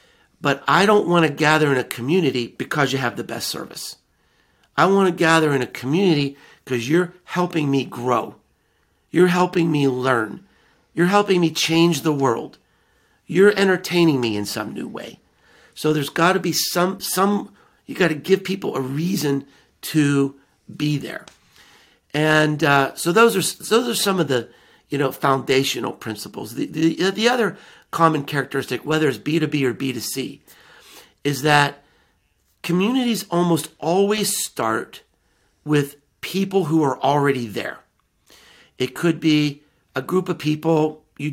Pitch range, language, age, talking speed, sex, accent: 135-175 Hz, English, 50-69, 160 wpm, male, American